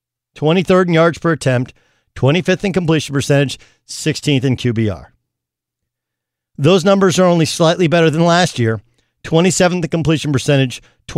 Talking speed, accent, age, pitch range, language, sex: 135 wpm, American, 50-69, 120-175 Hz, English, male